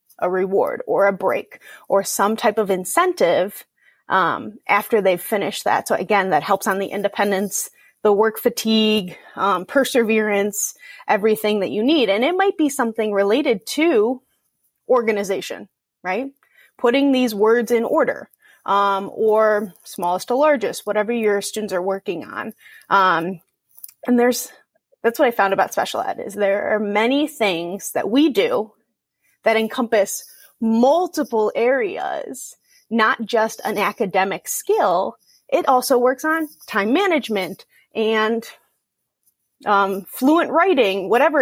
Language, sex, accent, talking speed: English, female, American, 135 wpm